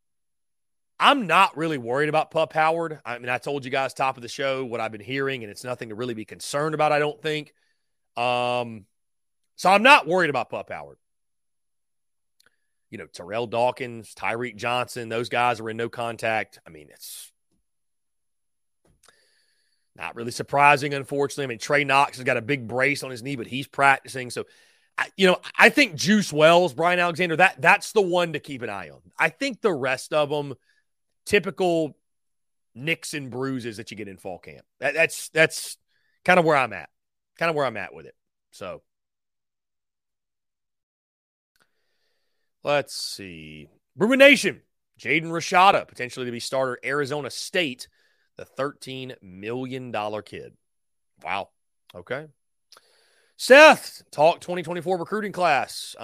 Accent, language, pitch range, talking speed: American, English, 120-165 Hz, 160 wpm